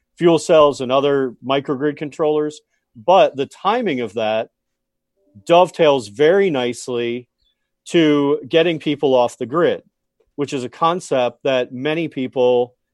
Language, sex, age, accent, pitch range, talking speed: English, male, 40-59, American, 120-155 Hz, 125 wpm